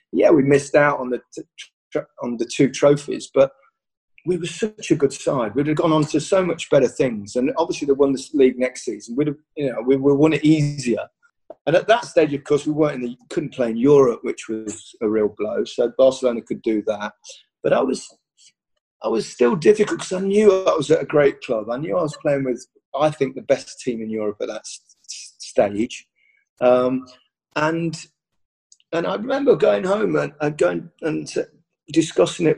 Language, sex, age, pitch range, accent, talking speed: English, male, 30-49, 125-155 Hz, British, 205 wpm